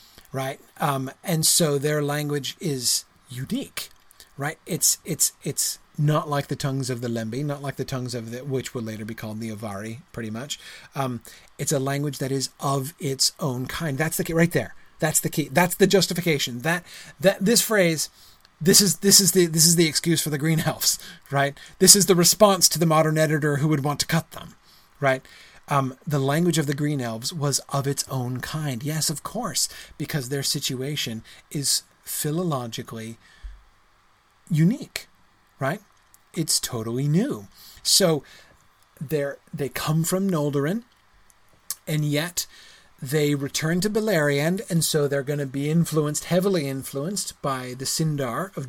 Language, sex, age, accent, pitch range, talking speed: English, male, 30-49, American, 130-165 Hz, 170 wpm